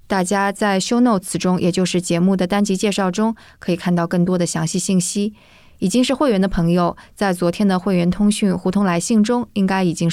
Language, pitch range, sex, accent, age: Chinese, 175-205 Hz, female, native, 20-39